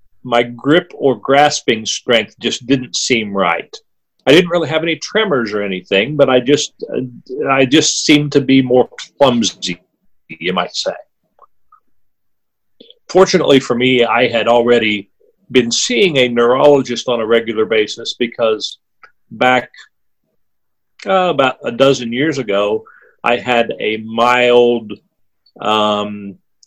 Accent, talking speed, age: American, 130 wpm, 40-59